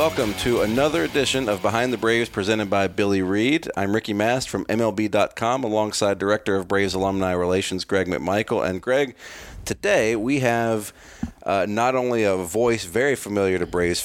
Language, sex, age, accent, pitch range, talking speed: English, male, 40-59, American, 95-110 Hz, 165 wpm